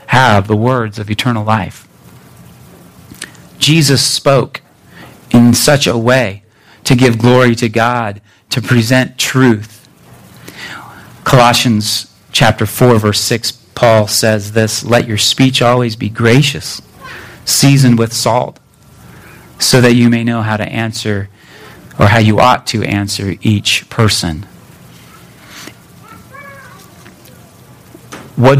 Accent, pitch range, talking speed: American, 105-125 Hz, 115 wpm